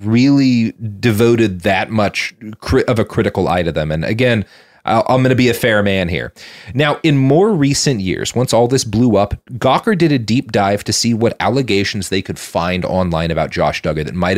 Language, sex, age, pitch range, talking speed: English, male, 30-49, 95-135 Hz, 200 wpm